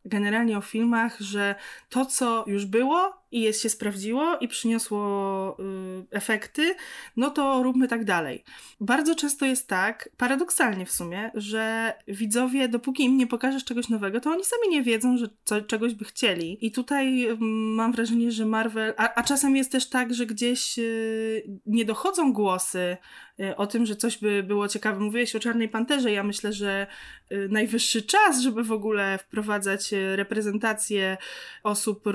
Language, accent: Polish, native